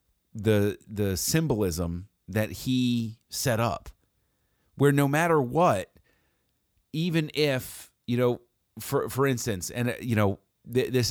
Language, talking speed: English, 125 wpm